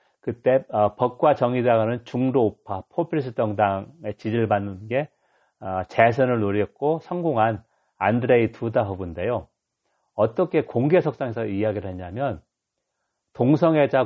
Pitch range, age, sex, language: 105-140 Hz, 40-59, male, Korean